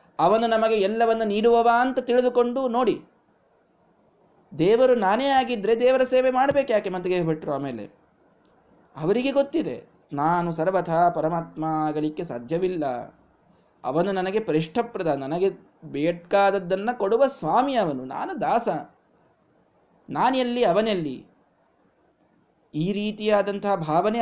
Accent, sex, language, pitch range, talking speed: native, male, Kannada, 155-235 Hz, 90 wpm